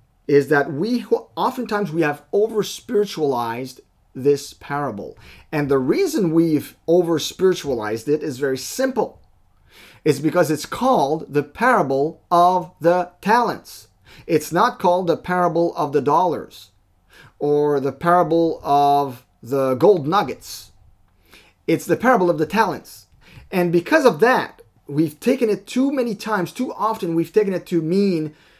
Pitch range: 125-175 Hz